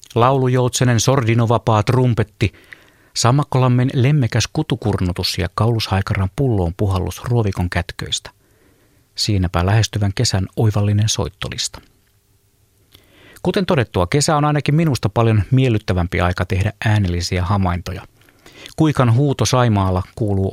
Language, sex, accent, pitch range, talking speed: Finnish, male, native, 100-125 Hz, 95 wpm